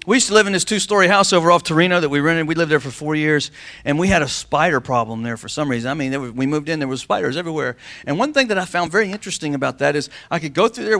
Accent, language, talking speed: American, English, 300 wpm